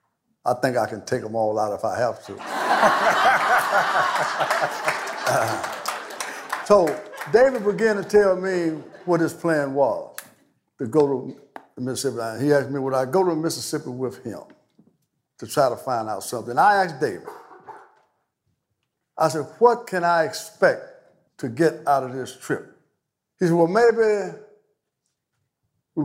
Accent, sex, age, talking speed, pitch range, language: American, male, 60-79, 150 wpm, 130-185 Hz, English